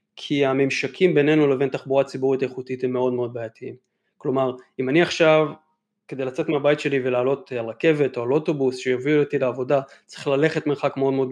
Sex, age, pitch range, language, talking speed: male, 20-39, 130-155 Hz, Hebrew, 175 wpm